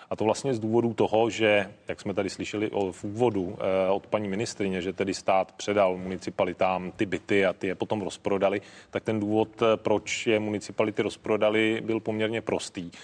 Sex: male